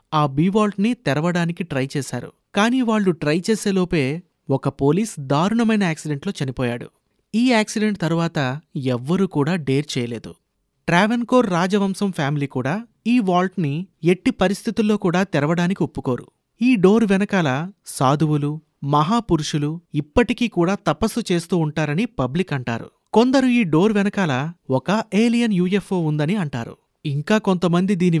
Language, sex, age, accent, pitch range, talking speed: Hindi, male, 30-49, native, 150-210 Hz, 65 wpm